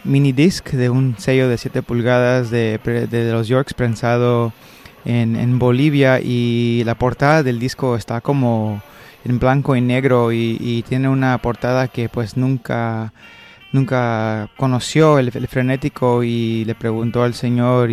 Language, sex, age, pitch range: Italian, male, 20-39, 115-130 Hz